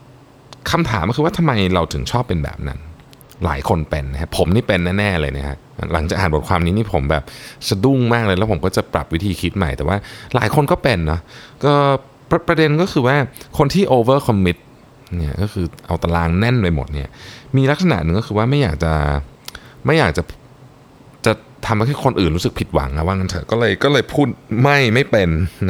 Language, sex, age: Thai, male, 20-39